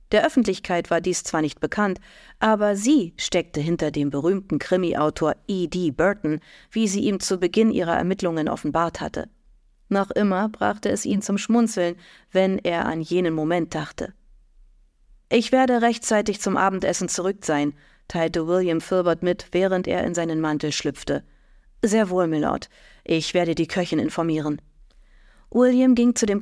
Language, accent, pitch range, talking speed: German, German, 165-205 Hz, 150 wpm